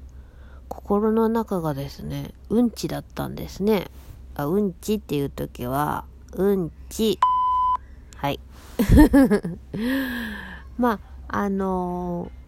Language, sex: Japanese, female